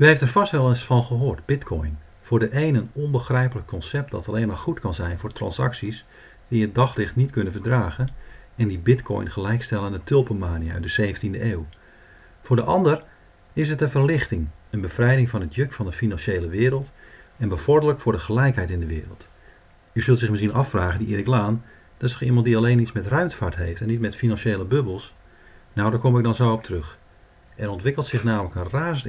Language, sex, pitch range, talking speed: English, male, 95-130 Hz, 205 wpm